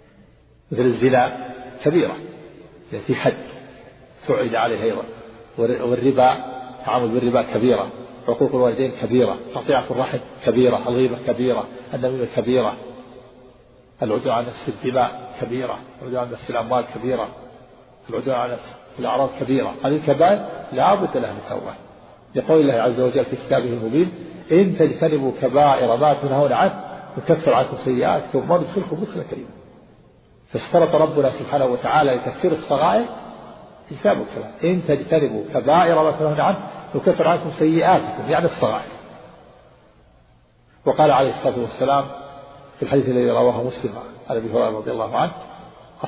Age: 50-69